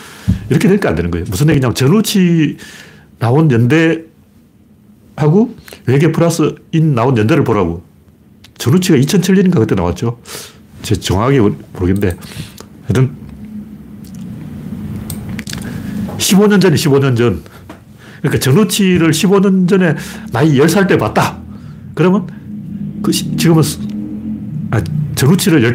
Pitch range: 105-175 Hz